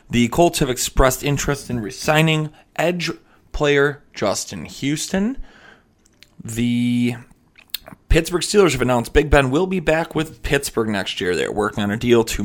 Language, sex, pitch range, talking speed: English, male, 110-150 Hz, 150 wpm